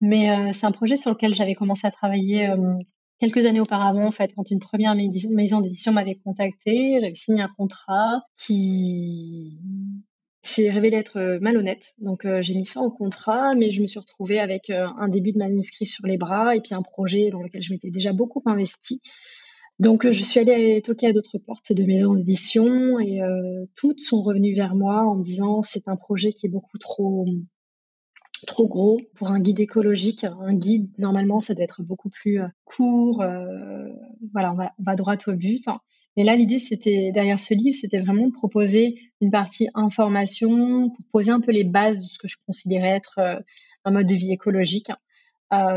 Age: 20-39